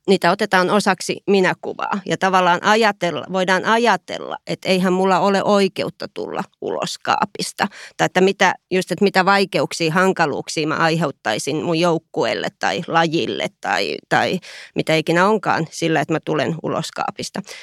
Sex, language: female, Finnish